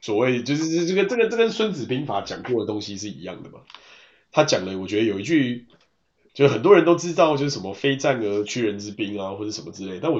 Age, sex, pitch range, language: 20-39, male, 105-140 Hz, Chinese